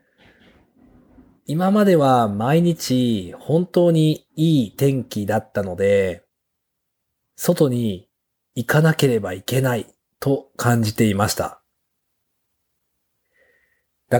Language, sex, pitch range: Japanese, male, 105-140 Hz